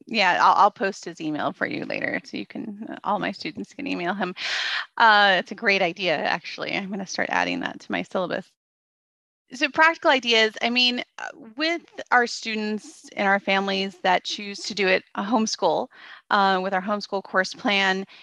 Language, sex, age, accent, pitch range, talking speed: English, female, 30-49, American, 185-240 Hz, 185 wpm